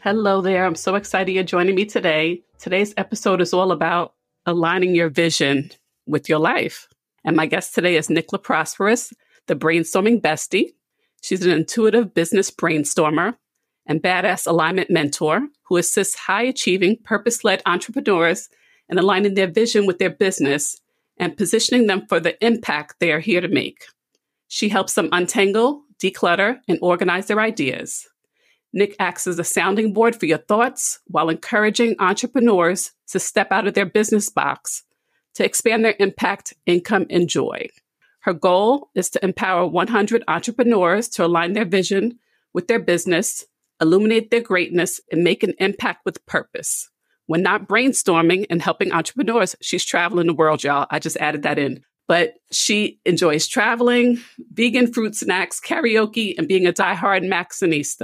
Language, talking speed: English, 155 wpm